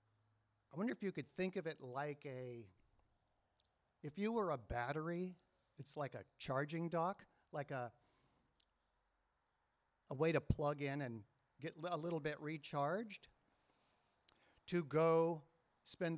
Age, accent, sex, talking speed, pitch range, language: 50-69, American, male, 135 wpm, 130-170 Hz, English